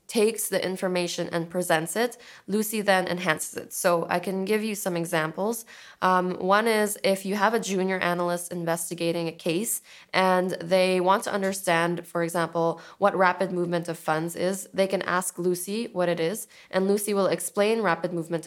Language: English